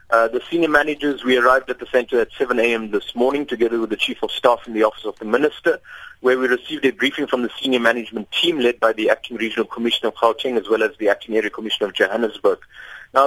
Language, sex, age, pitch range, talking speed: English, male, 30-49, 115-165 Hz, 245 wpm